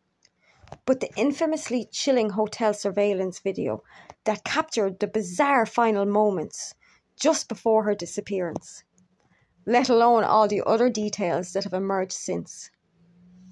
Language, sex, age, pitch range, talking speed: English, female, 30-49, 200-240 Hz, 120 wpm